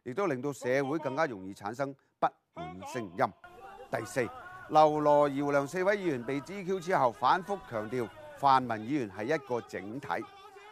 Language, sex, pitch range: Chinese, male, 120-175 Hz